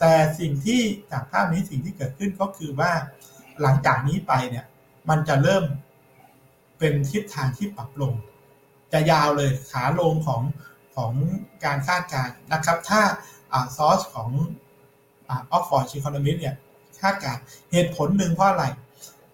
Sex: male